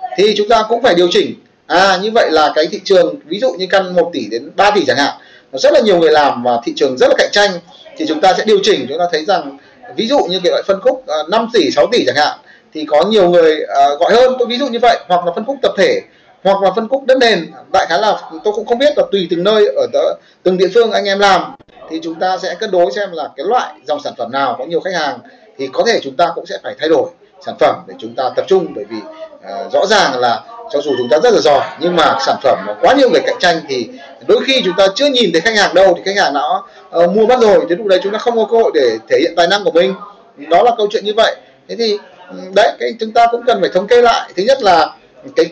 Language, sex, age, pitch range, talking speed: Vietnamese, male, 30-49, 180-270 Hz, 285 wpm